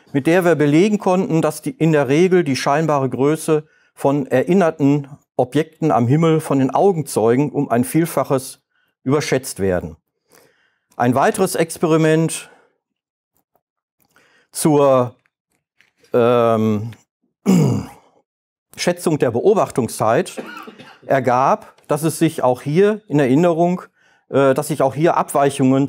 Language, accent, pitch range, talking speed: German, German, 130-170 Hz, 95 wpm